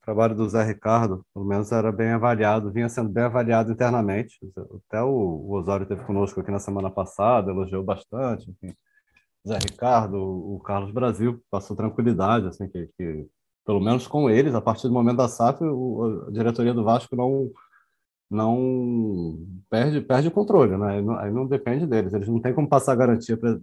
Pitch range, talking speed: 105-135 Hz, 180 wpm